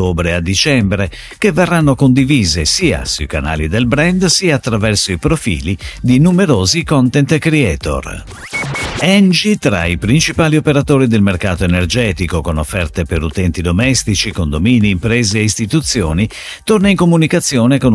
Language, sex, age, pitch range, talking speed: Italian, male, 50-69, 90-145 Hz, 130 wpm